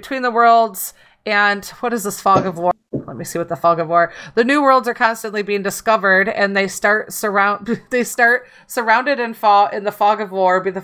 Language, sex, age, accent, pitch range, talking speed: English, female, 30-49, American, 190-225 Hz, 225 wpm